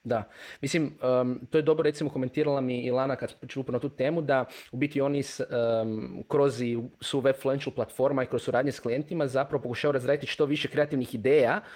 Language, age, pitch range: Croatian, 30-49, 130-155 Hz